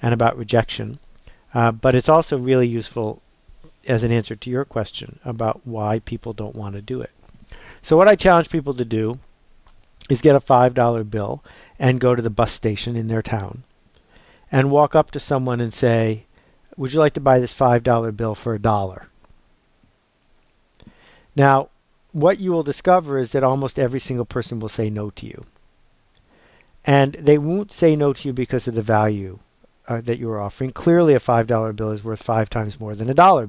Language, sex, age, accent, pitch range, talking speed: English, male, 50-69, American, 115-140 Hz, 190 wpm